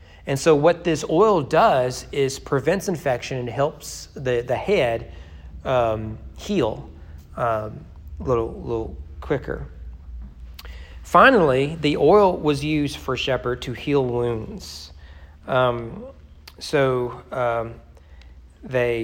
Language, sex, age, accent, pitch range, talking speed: English, male, 40-59, American, 115-150 Hz, 110 wpm